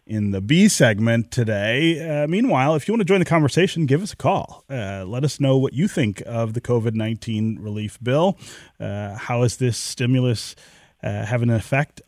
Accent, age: American, 30-49